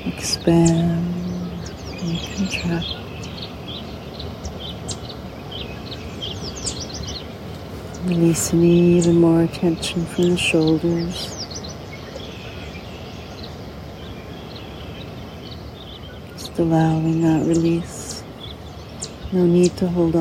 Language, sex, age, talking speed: English, female, 60-79, 55 wpm